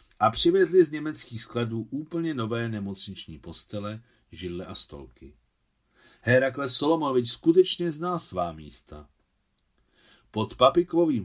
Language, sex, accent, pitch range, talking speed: Czech, male, native, 105-135 Hz, 105 wpm